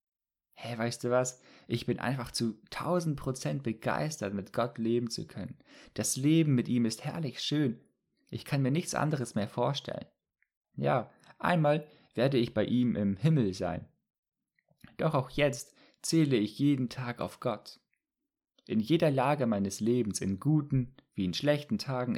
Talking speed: 160 wpm